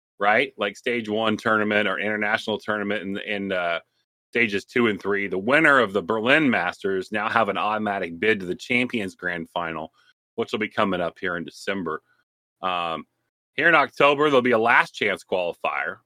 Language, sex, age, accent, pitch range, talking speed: English, male, 30-49, American, 100-125 Hz, 185 wpm